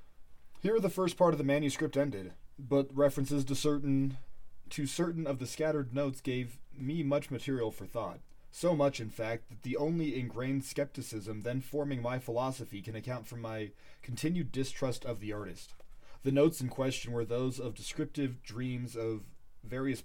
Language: English